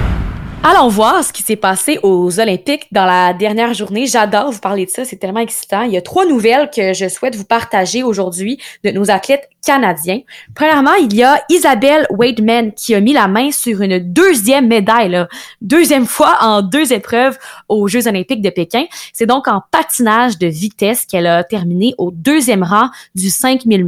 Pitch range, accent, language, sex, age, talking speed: 195-265 Hz, Canadian, French, female, 20-39, 185 wpm